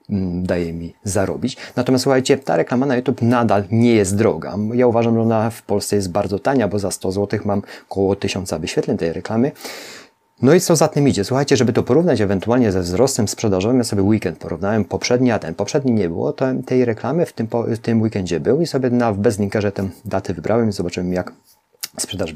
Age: 30-49